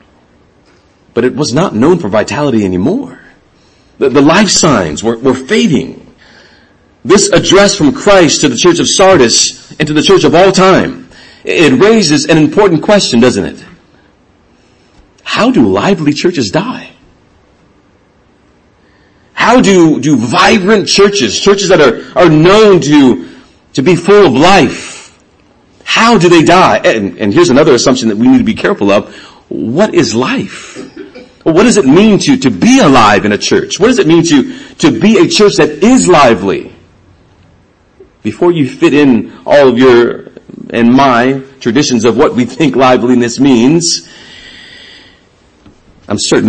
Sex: male